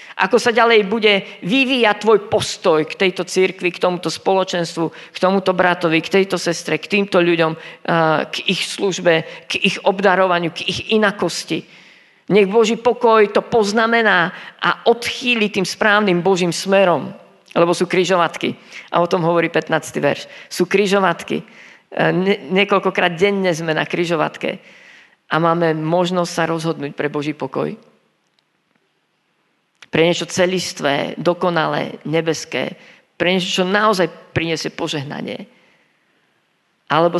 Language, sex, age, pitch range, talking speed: Slovak, female, 40-59, 160-195 Hz, 125 wpm